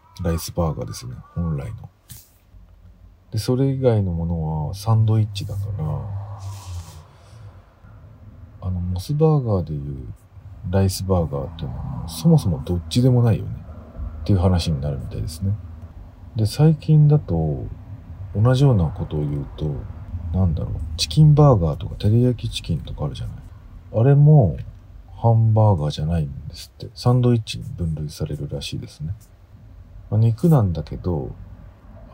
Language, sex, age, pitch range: Japanese, male, 40-59, 85-110 Hz